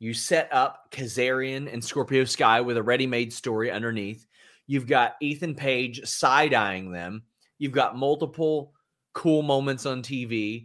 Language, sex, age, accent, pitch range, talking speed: English, male, 30-49, American, 115-145 Hz, 140 wpm